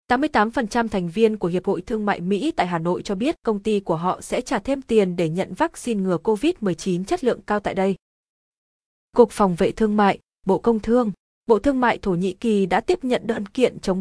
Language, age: Vietnamese, 20-39